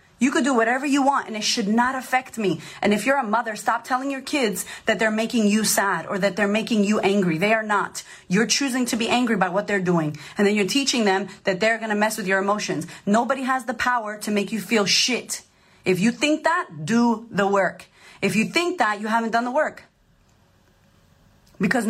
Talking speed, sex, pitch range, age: 225 wpm, female, 205-275 Hz, 30-49